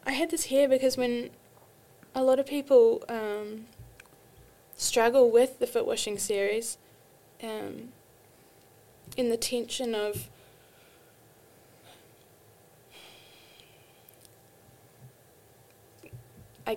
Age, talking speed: 20-39, 80 wpm